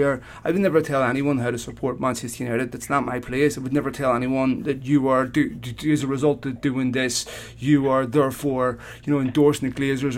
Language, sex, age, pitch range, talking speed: English, male, 30-49, 135-155 Hz, 225 wpm